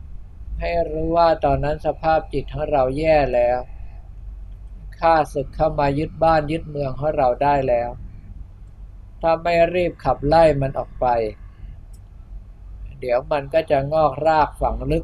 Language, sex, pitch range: Thai, male, 95-150 Hz